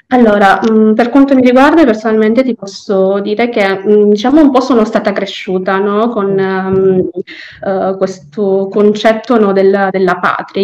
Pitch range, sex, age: 200-235 Hz, female, 20-39